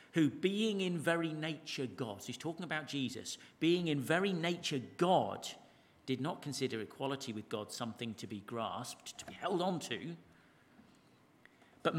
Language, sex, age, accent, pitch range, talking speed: English, male, 50-69, British, 125-170 Hz, 155 wpm